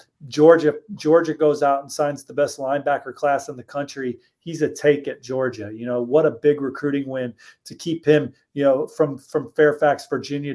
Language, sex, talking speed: English, male, 195 wpm